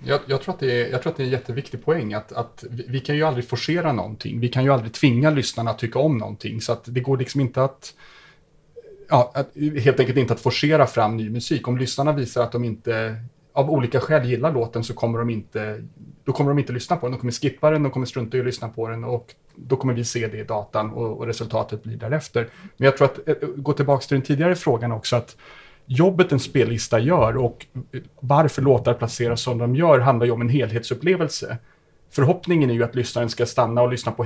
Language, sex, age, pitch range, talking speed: English, male, 30-49, 115-140 Hz, 235 wpm